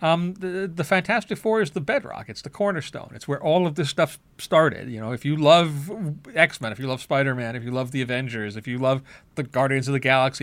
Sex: male